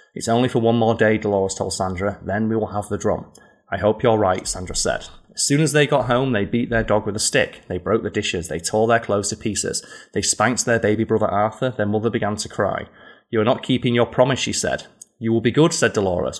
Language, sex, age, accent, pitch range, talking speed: English, male, 20-39, British, 100-120 Hz, 255 wpm